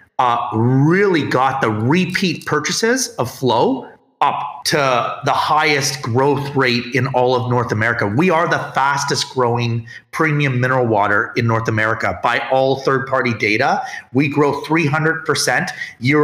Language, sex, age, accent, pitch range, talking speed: English, male, 30-49, American, 125-160 Hz, 140 wpm